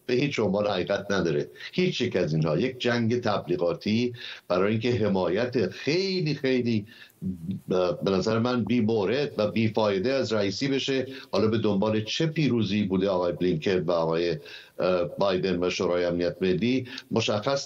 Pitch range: 100-125 Hz